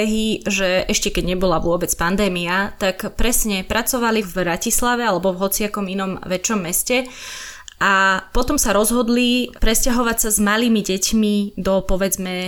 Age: 20-39